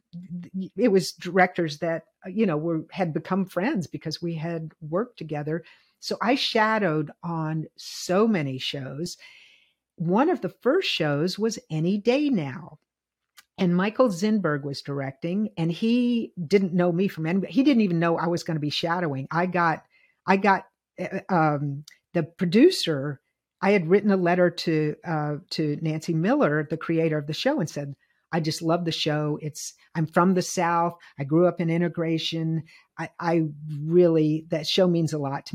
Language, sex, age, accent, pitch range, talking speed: English, female, 50-69, American, 160-205 Hz, 170 wpm